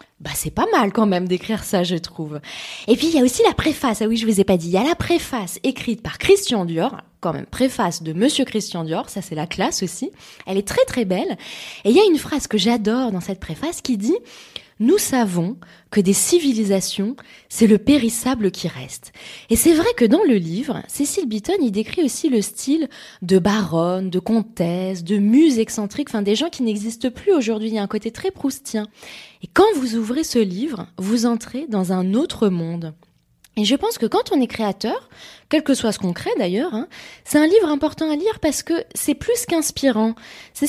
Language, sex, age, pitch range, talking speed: French, female, 20-39, 195-285 Hz, 220 wpm